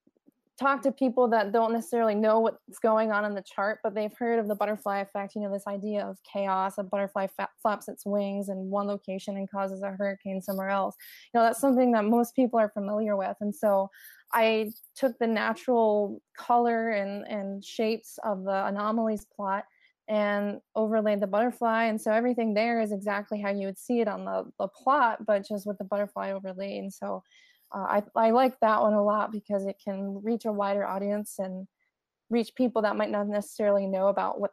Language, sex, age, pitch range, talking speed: English, female, 20-39, 200-230 Hz, 205 wpm